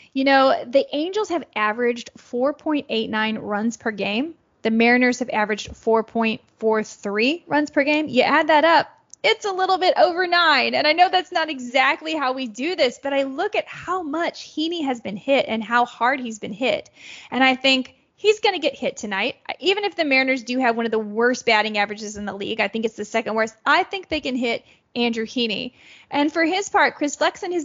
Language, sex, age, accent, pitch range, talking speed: English, female, 10-29, American, 225-305 Hz, 215 wpm